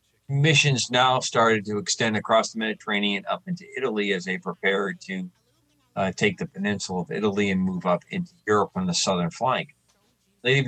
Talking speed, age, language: 175 wpm, 40-59, English